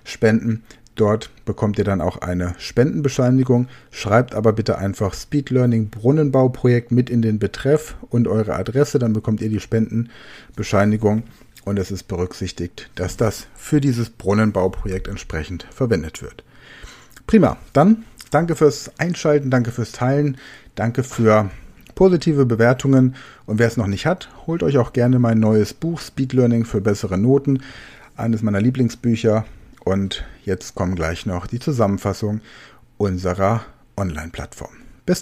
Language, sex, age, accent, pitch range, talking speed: German, male, 40-59, German, 105-130 Hz, 135 wpm